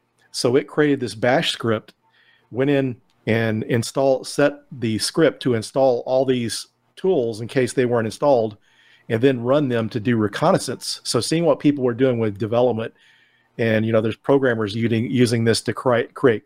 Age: 40-59